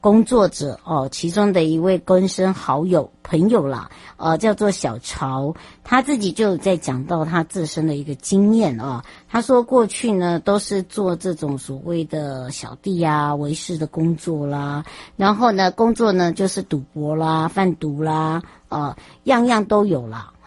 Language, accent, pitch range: Chinese, American, 155-200 Hz